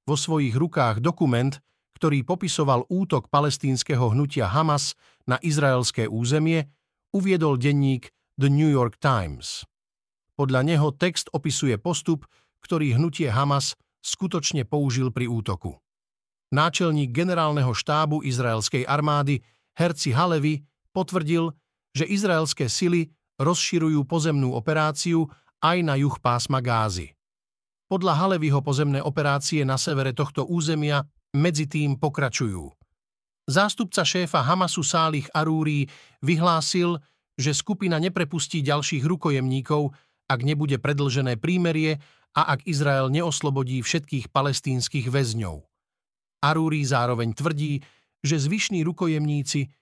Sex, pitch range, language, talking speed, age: male, 130-160 Hz, Slovak, 105 wpm, 50-69